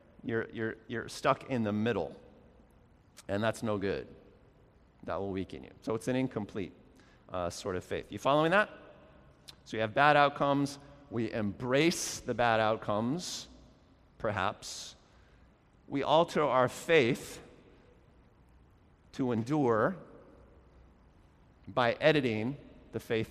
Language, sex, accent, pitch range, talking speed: English, male, American, 110-140 Hz, 120 wpm